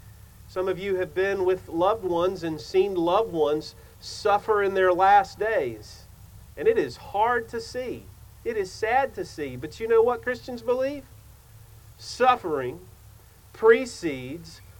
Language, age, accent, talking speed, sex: English, 40-59, American, 145 wpm, male